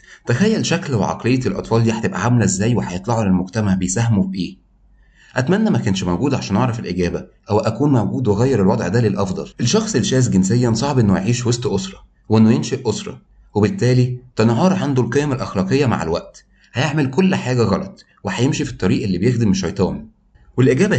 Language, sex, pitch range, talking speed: Arabic, male, 95-125 Hz, 160 wpm